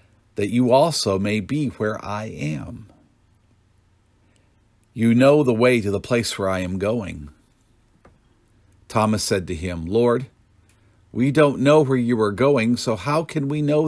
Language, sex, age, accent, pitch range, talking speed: English, male, 50-69, American, 95-125 Hz, 155 wpm